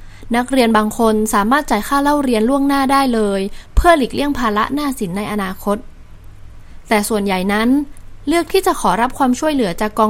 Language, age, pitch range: Thai, 20-39, 210-275 Hz